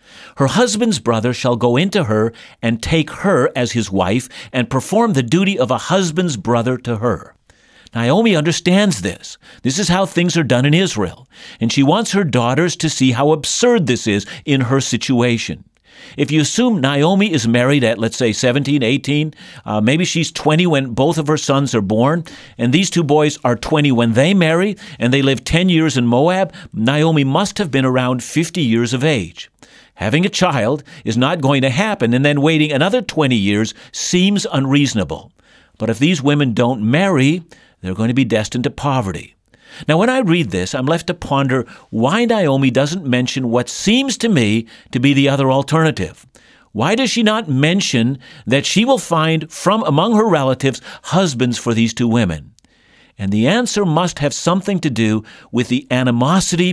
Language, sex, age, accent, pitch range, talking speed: English, male, 50-69, American, 120-170 Hz, 185 wpm